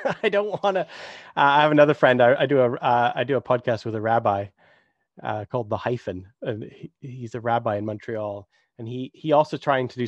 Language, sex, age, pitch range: English, male, 30-49, 120-150 Hz